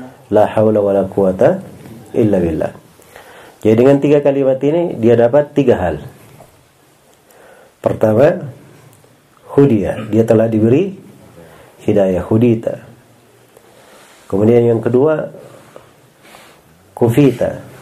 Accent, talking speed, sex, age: native, 90 wpm, male, 40-59